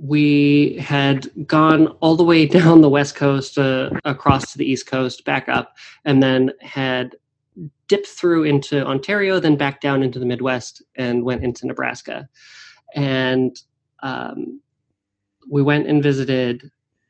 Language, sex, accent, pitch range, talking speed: English, male, American, 125-145 Hz, 145 wpm